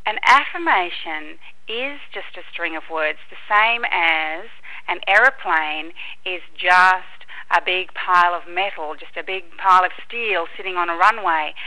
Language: English